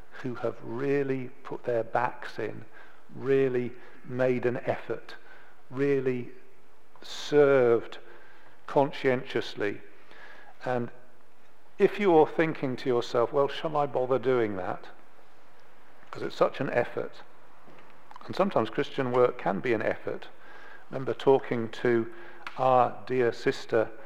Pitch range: 115-135 Hz